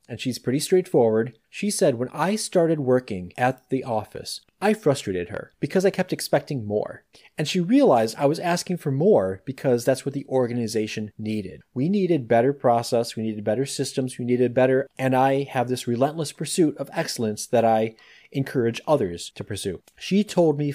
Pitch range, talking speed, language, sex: 115-155 Hz, 180 wpm, English, male